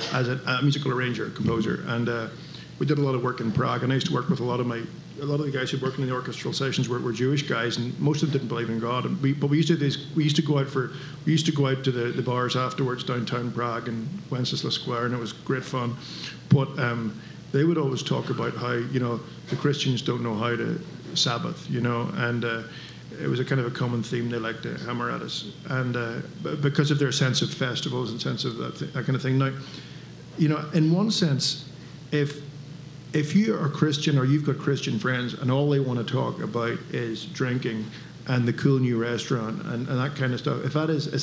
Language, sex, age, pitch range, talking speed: English, male, 50-69, 125-150 Hz, 255 wpm